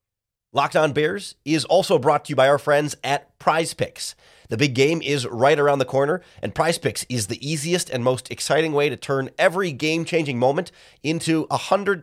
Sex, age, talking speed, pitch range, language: male, 30-49, 200 wpm, 110-145 Hz, English